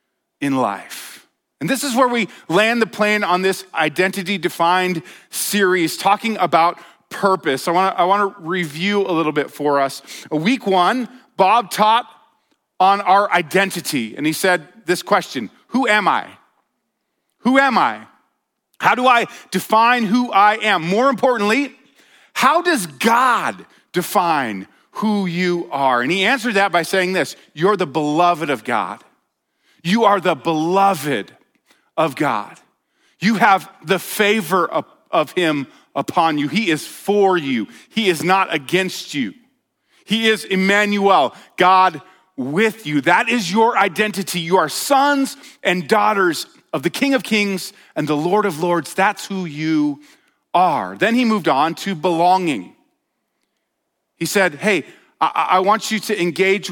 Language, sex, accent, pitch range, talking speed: English, male, American, 175-225 Hz, 150 wpm